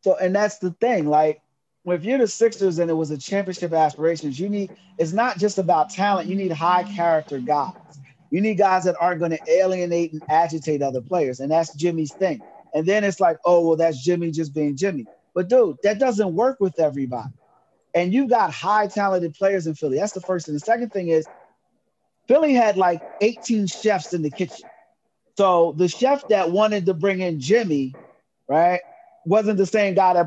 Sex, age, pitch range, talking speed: male, 30-49, 160-200 Hz, 200 wpm